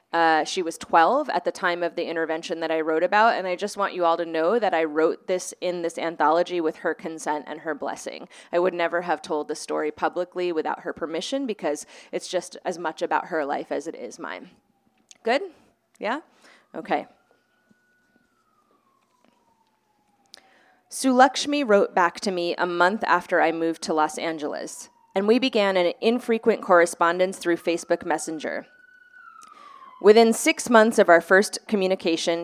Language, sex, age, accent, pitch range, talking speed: English, female, 20-39, American, 165-215 Hz, 165 wpm